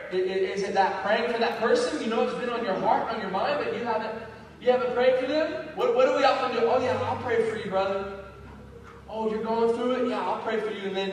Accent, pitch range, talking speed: American, 190-265 Hz, 270 wpm